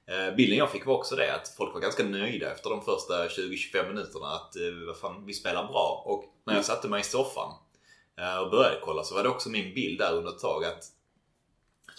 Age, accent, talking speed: 20-39, native, 220 wpm